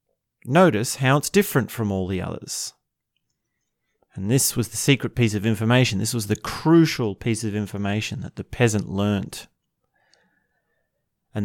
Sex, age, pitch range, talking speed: male, 30-49, 100-130 Hz, 145 wpm